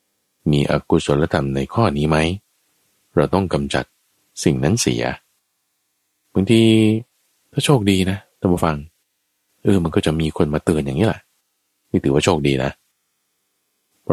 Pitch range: 70-95 Hz